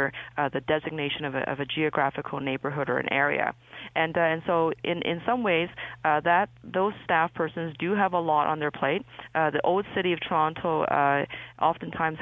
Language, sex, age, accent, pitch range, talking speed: English, female, 30-49, American, 150-170 Hz, 195 wpm